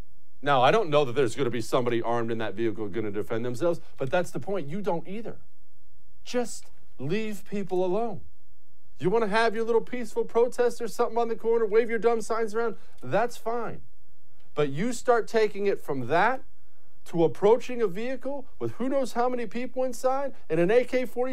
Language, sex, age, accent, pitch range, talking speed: English, male, 50-69, American, 185-255 Hz, 195 wpm